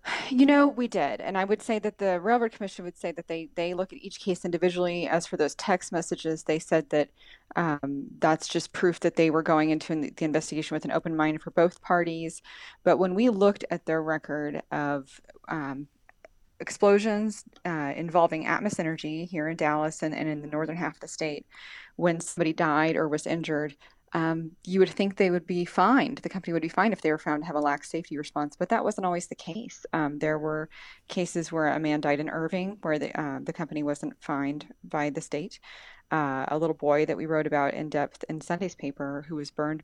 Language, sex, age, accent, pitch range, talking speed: English, female, 30-49, American, 155-180 Hz, 220 wpm